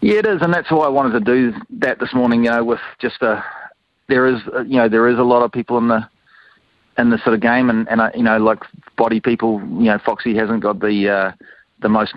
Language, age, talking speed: English, 30-49, 265 wpm